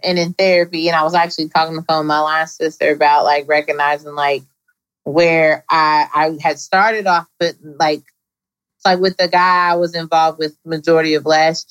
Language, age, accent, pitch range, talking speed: English, 20-39, American, 145-180 Hz, 180 wpm